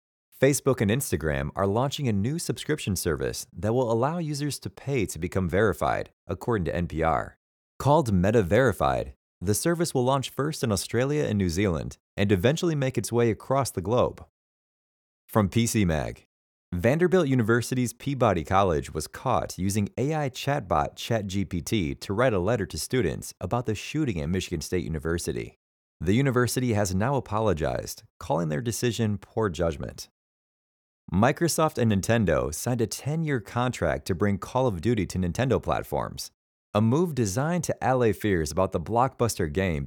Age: 30-49